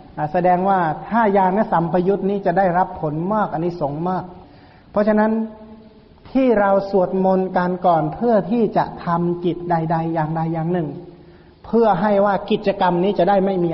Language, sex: Thai, male